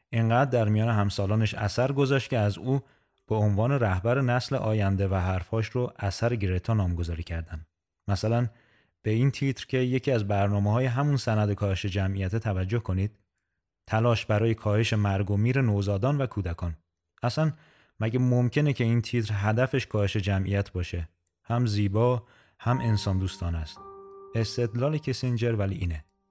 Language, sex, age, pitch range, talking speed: Persian, male, 30-49, 100-125 Hz, 150 wpm